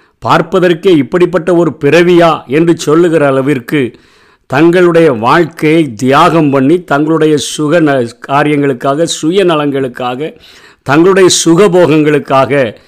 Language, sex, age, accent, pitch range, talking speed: Tamil, male, 50-69, native, 140-170 Hz, 80 wpm